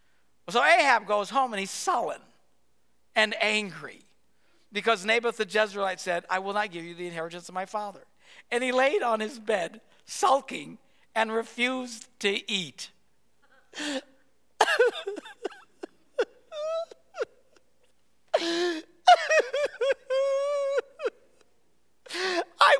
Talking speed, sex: 95 wpm, male